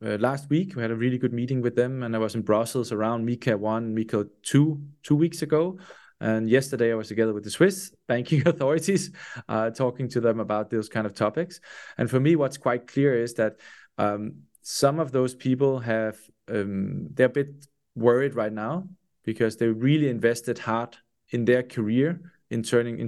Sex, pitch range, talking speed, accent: male, 110-135 Hz, 190 wpm, Danish